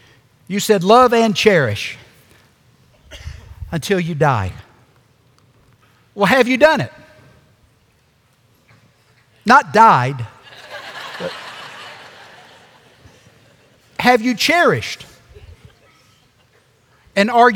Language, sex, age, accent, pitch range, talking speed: English, male, 60-79, American, 120-190 Hz, 70 wpm